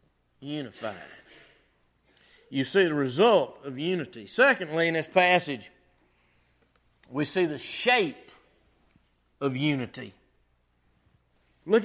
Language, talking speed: English, 90 wpm